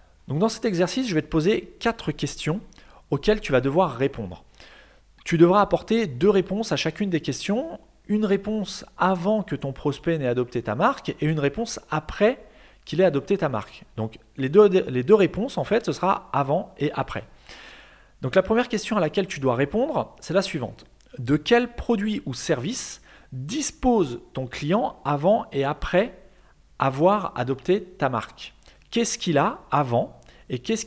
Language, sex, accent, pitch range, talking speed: French, male, French, 140-210 Hz, 175 wpm